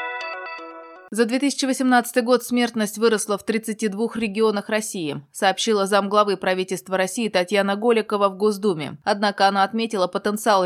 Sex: female